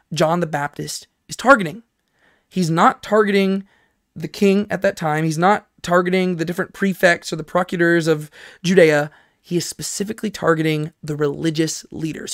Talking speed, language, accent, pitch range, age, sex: 150 wpm, English, American, 160-195 Hz, 20-39, male